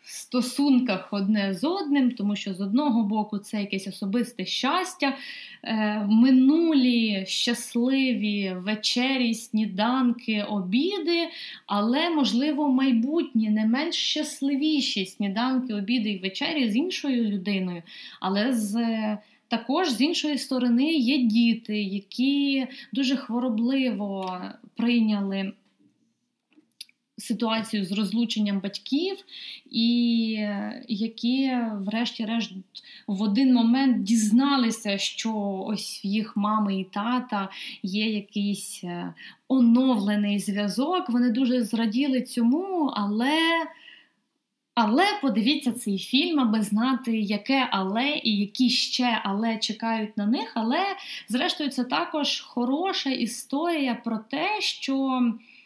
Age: 20-39